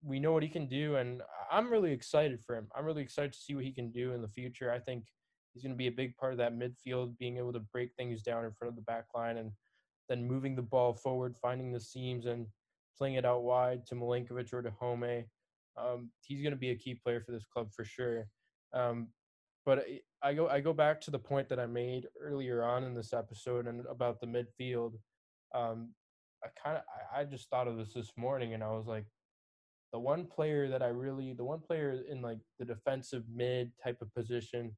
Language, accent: English, American